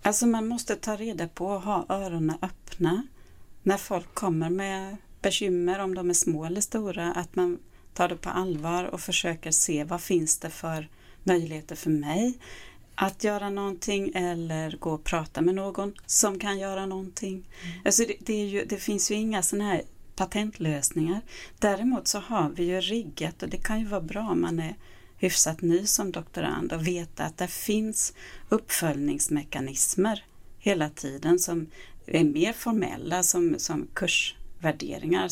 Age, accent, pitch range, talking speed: 30-49, native, 165-195 Hz, 165 wpm